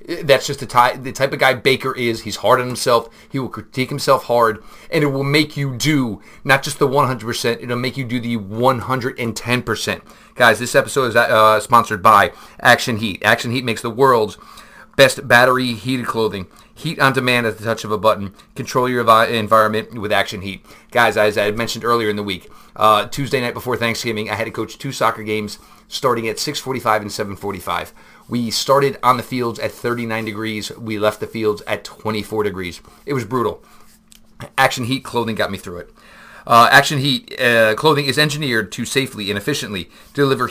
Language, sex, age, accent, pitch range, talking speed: English, male, 30-49, American, 110-130 Hz, 195 wpm